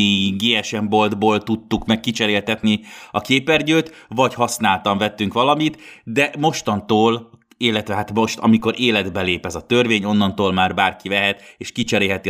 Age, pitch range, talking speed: 30-49, 100-120 Hz, 135 wpm